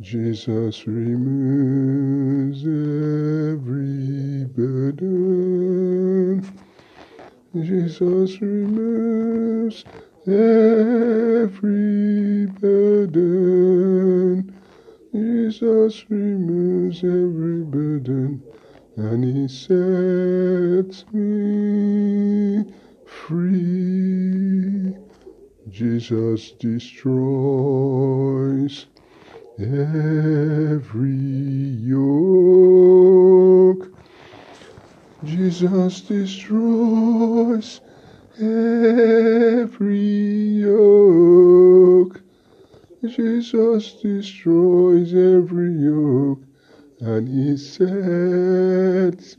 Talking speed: 40 wpm